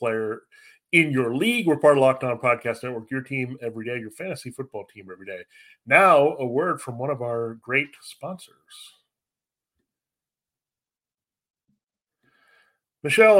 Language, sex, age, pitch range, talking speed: English, male, 30-49, 115-145 Hz, 135 wpm